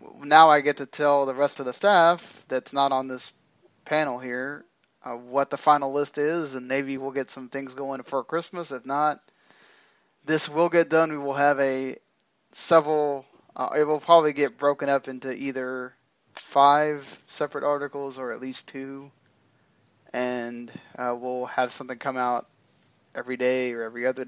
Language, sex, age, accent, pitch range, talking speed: English, male, 20-39, American, 130-150 Hz, 175 wpm